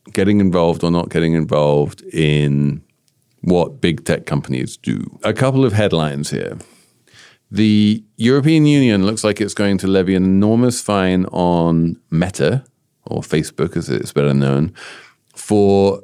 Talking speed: 140 wpm